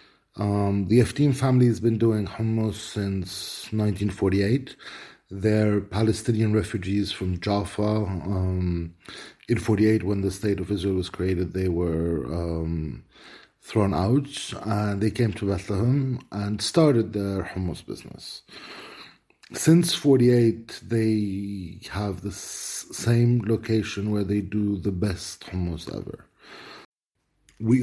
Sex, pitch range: male, 100-130 Hz